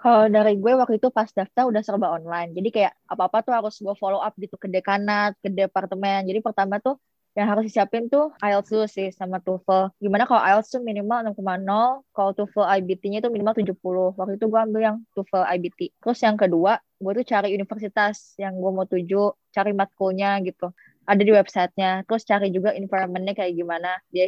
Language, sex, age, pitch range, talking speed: Indonesian, female, 20-39, 185-215 Hz, 190 wpm